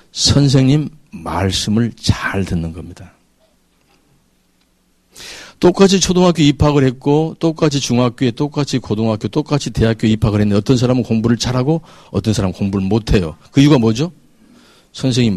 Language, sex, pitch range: Korean, male, 105-150 Hz